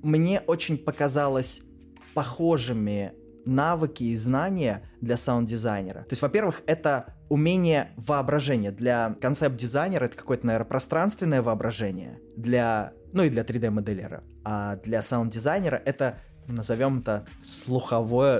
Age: 20-39